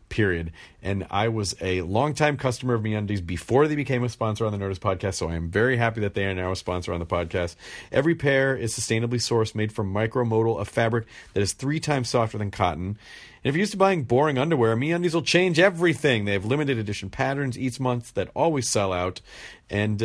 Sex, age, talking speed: male, 40-59, 220 wpm